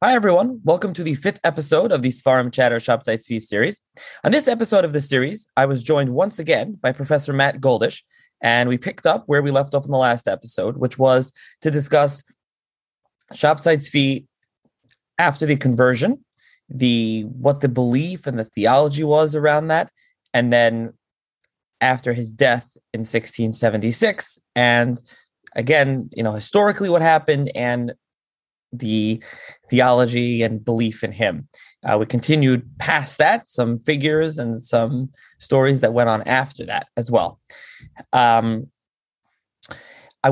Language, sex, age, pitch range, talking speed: English, male, 20-39, 120-150 Hz, 150 wpm